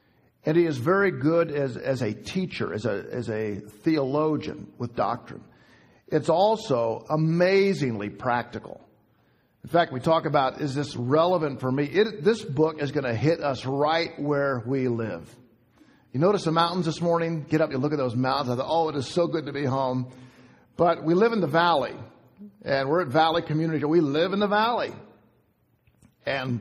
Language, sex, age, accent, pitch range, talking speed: English, male, 50-69, American, 125-170 Hz, 185 wpm